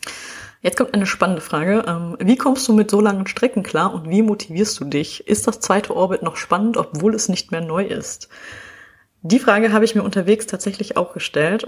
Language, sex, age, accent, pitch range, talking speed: German, female, 20-39, German, 195-240 Hz, 200 wpm